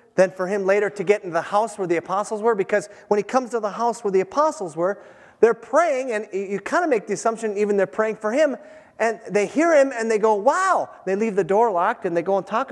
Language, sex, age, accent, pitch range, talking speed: English, male, 30-49, American, 170-225 Hz, 265 wpm